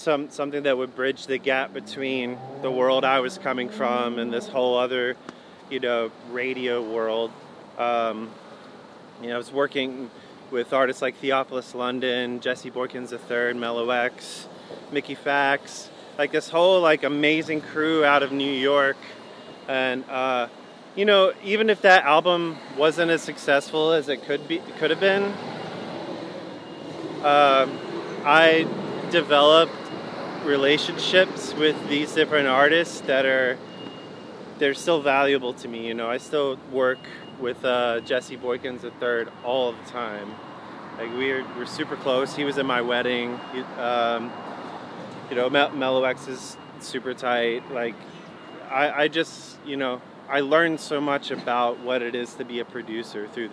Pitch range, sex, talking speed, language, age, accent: 120-145 Hz, male, 150 wpm, English, 30-49, American